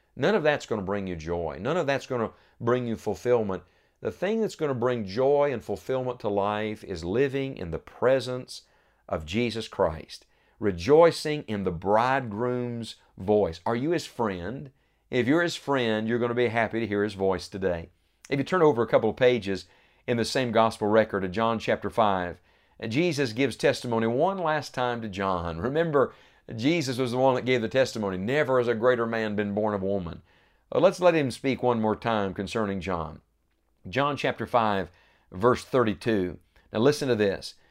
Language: English